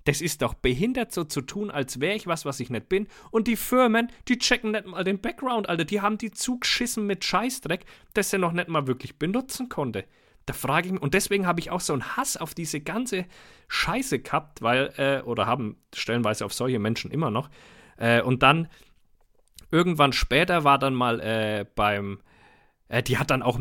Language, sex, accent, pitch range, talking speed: German, male, German, 125-175 Hz, 205 wpm